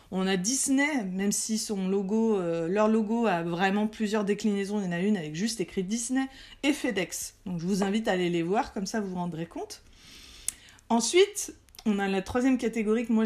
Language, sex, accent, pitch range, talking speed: French, female, French, 195-245 Hz, 215 wpm